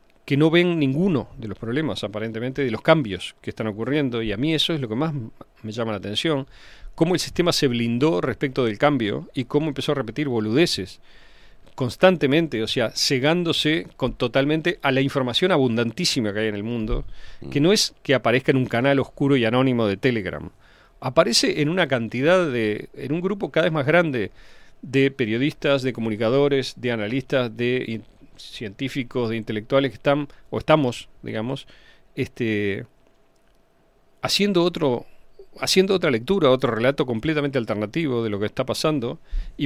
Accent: Argentinian